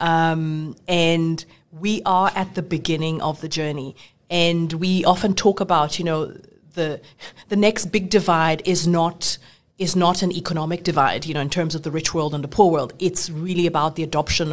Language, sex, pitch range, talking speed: English, female, 160-195 Hz, 190 wpm